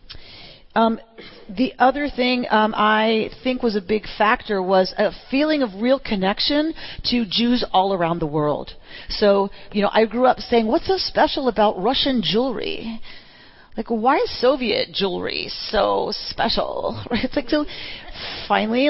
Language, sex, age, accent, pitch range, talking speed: English, female, 40-59, American, 205-260 Hz, 150 wpm